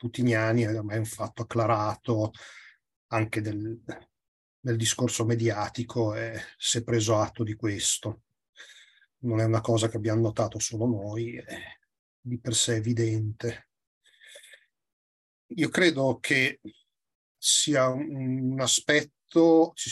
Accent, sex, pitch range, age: native, male, 115-130 Hz, 40-59